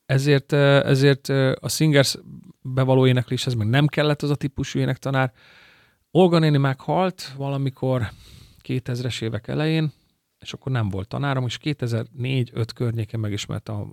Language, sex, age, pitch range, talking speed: Hungarian, male, 40-59, 110-135 Hz, 125 wpm